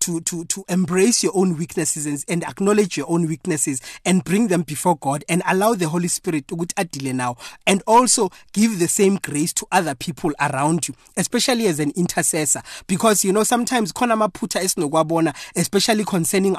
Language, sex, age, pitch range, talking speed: English, male, 30-49, 155-200 Hz, 170 wpm